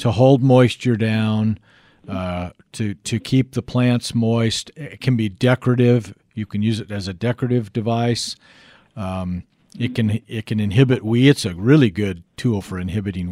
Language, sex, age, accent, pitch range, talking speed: English, male, 50-69, American, 105-130 Hz, 165 wpm